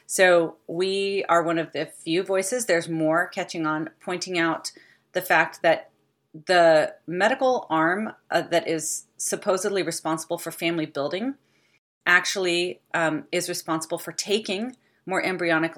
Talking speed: 135 wpm